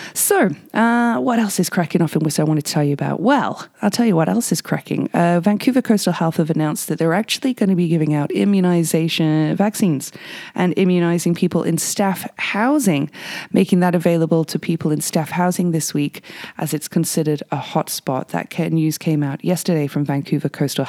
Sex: female